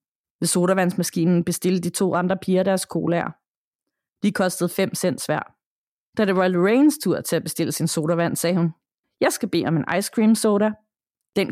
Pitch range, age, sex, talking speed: 175-220 Hz, 30-49, female, 180 wpm